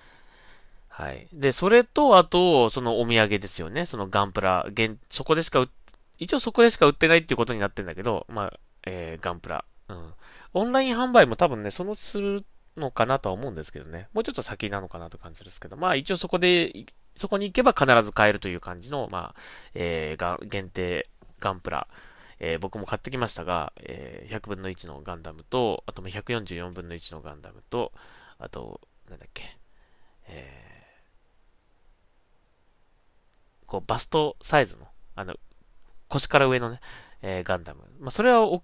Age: 20-39